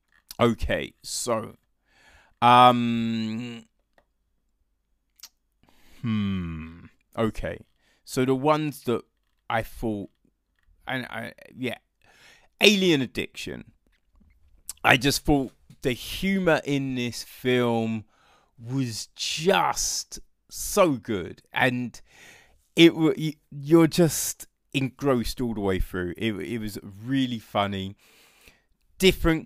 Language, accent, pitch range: English, British, 110-140 Hz